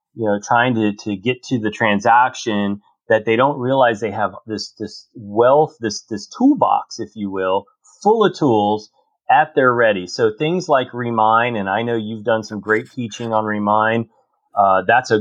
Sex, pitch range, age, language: male, 110-130 Hz, 30-49, English